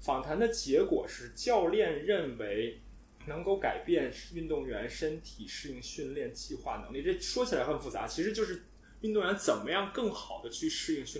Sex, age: male, 20-39